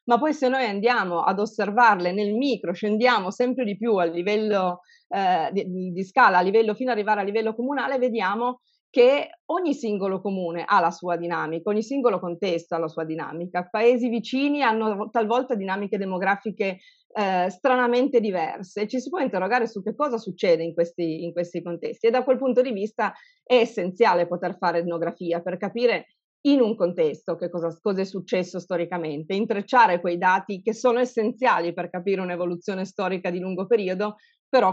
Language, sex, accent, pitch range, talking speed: Italian, female, native, 175-240 Hz, 175 wpm